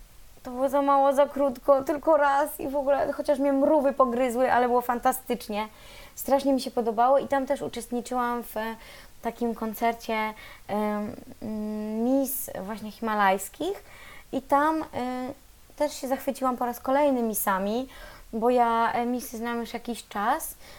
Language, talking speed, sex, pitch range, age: Polish, 150 wpm, female, 230-265 Hz, 20-39